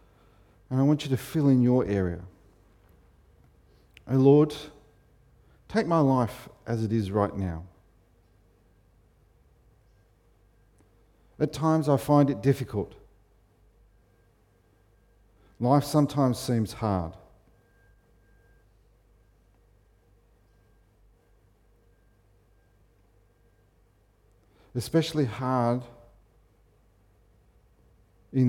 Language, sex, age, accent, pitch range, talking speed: English, male, 50-69, Australian, 95-115 Hz, 65 wpm